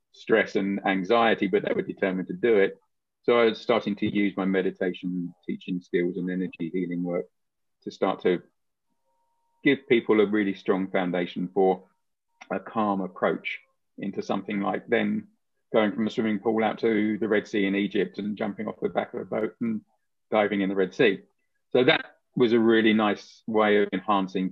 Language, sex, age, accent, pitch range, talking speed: English, male, 40-59, British, 90-110 Hz, 185 wpm